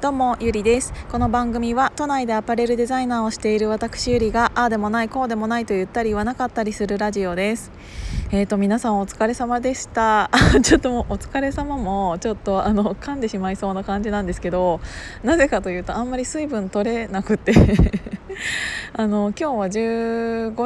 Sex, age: female, 20-39